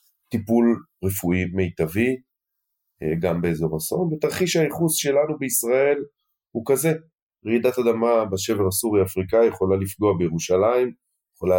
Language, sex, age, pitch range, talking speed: Hebrew, male, 30-49, 95-120 Hz, 105 wpm